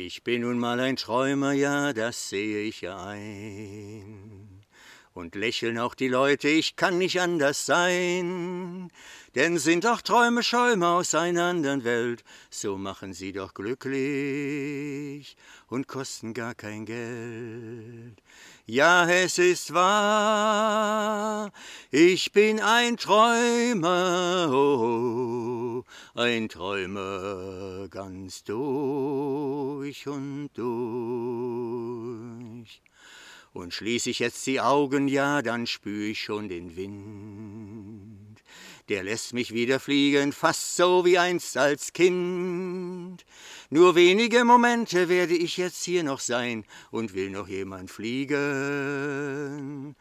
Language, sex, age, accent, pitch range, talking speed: German, male, 60-79, German, 115-180 Hz, 110 wpm